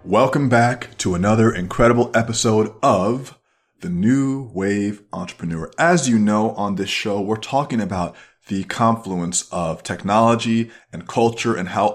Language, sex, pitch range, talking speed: English, male, 105-130 Hz, 140 wpm